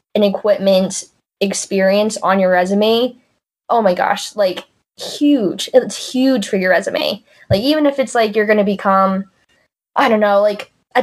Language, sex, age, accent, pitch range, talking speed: English, female, 10-29, American, 190-225 Hz, 165 wpm